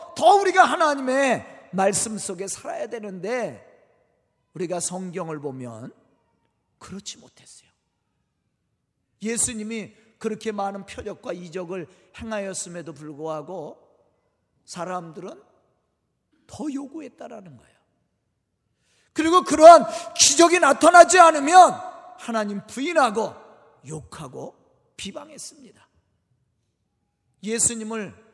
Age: 40-59